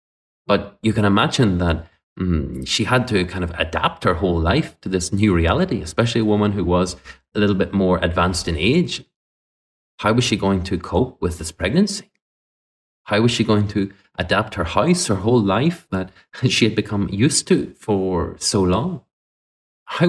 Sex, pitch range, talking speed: male, 90-115 Hz, 180 wpm